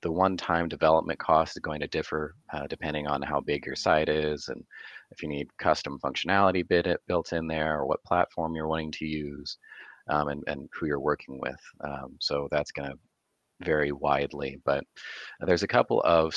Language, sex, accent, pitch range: English, male, American, 75-80 Hz